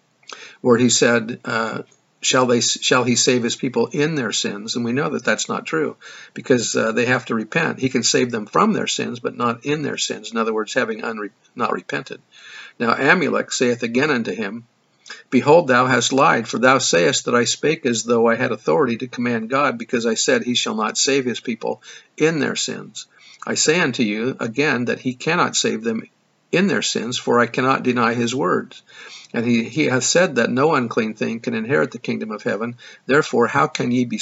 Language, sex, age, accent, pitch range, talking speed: English, male, 50-69, American, 120-135 Hz, 215 wpm